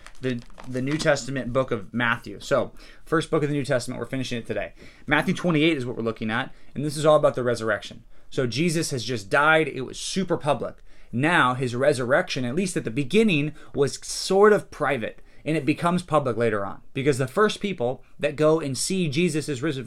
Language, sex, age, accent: English, male, 30-49, American